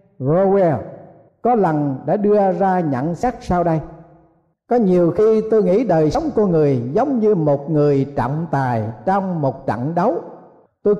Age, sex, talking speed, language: 50-69, male, 165 wpm, Vietnamese